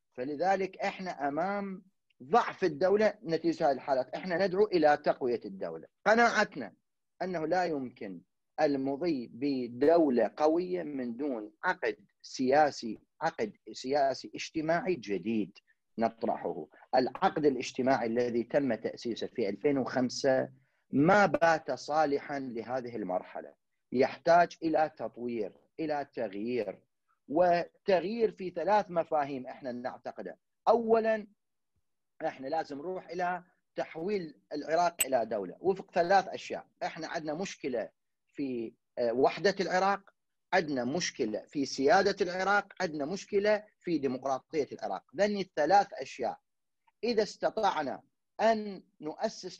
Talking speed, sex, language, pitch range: 105 wpm, male, Arabic, 135-195 Hz